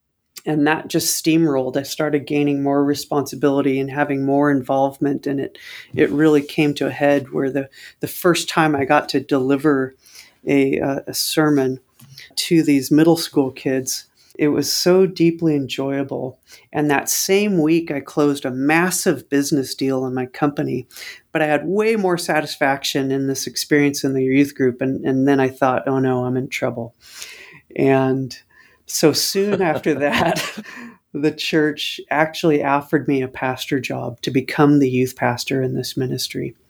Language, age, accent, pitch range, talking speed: English, 40-59, American, 135-155 Hz, 165 wpm